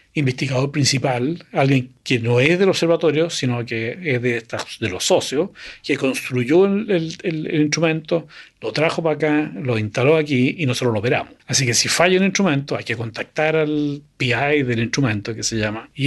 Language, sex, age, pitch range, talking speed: Spanish, male, 40-59, 120-155 Hz, 185 wpm